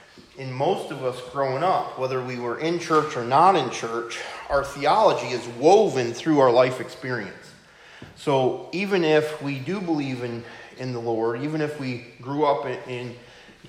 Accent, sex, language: American, male, English